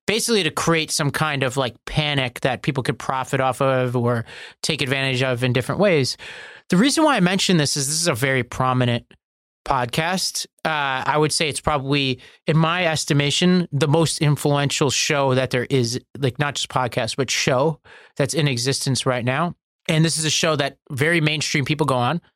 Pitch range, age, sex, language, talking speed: 130-175 Hz, 30-49, male, English, 195 wpm